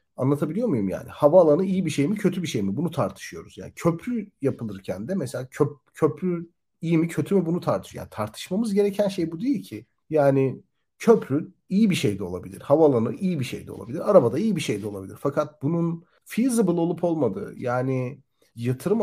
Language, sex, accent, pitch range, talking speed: Turkish, male, native, 125-175 Hz, 190 wpm